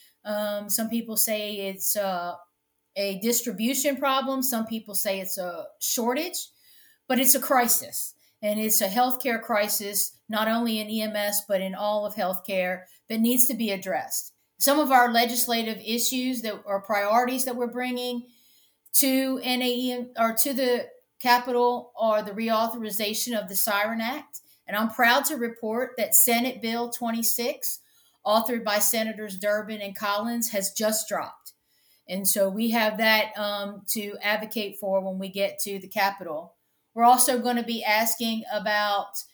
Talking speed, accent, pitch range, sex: 155 wpm, American, 210-245 Hz, female